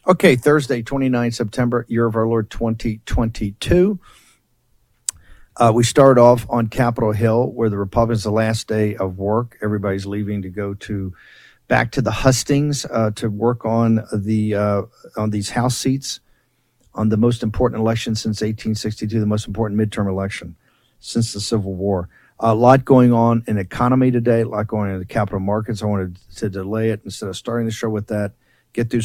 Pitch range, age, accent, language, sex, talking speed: 100-120 Hz, 50-69, American, English, male, 180 wpm